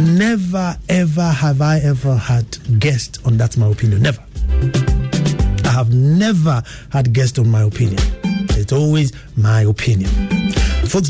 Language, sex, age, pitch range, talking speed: English, male, 50-69, 120-155 Hz, 135 wpm